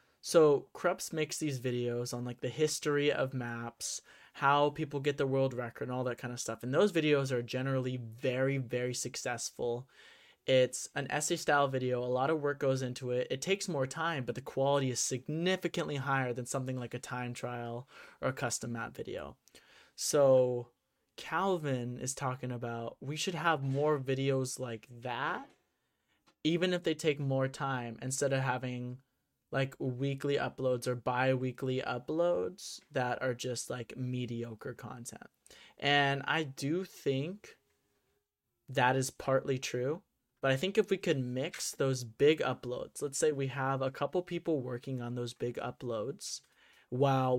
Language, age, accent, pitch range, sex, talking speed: English, 20-39, American, 125-145 Hz, male, 160 wpm